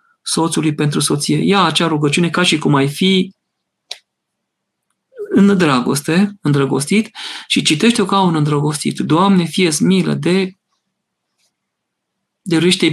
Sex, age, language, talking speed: male, 40-59, Romanian, 115 wpm